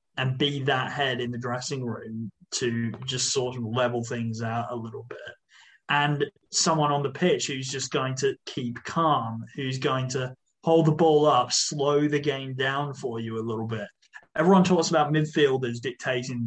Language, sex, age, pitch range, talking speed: English, male, 20-39, 130-170 Hz, 180 wpm